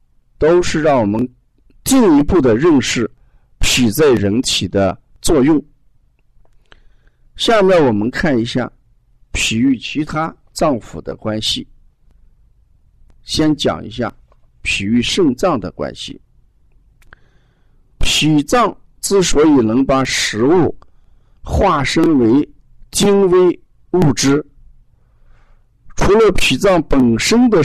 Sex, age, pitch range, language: male, 50-69, 110-180 Hz, Chinese